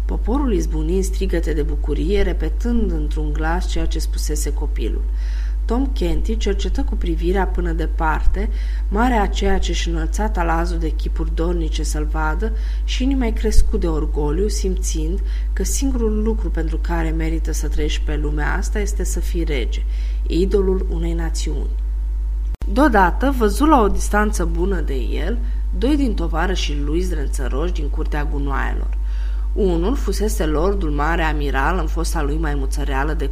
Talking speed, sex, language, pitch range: 150 wpm, female, Romanian, 145-195 Hz